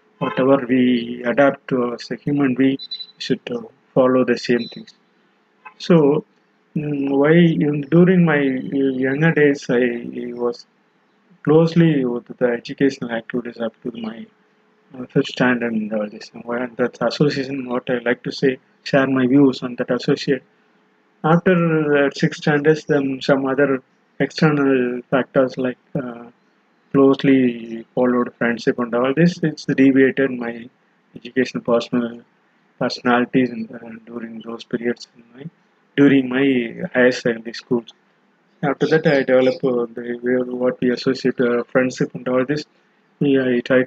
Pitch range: 120-145 Hz